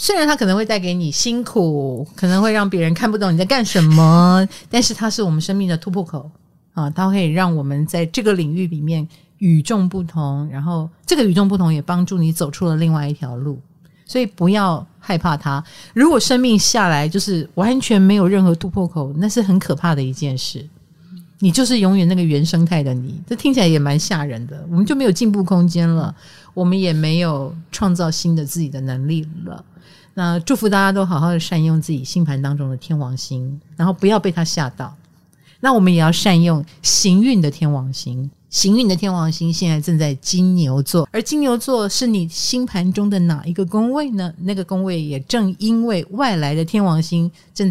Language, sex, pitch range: Chinese, female, 155-195 Hz